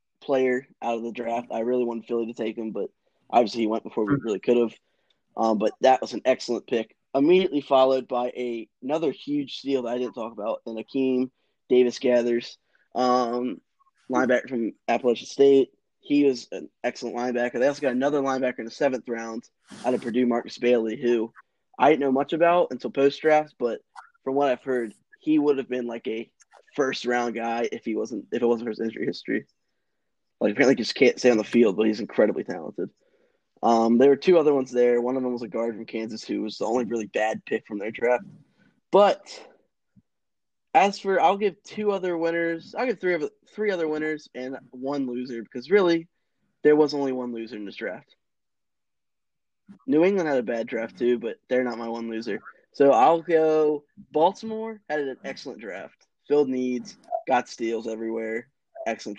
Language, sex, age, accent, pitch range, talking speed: English, male, 10-29, American, 115-150 Hz, 190 wpm